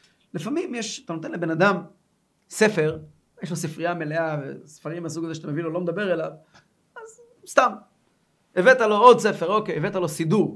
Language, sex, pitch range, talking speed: Hebrew, male, 155-220 Hz, 170 wpm